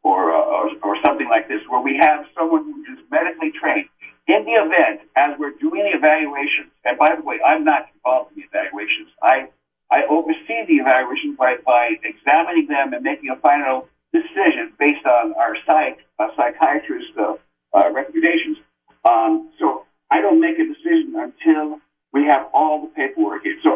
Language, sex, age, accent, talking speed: English, male, 50-69, American, 180 wpm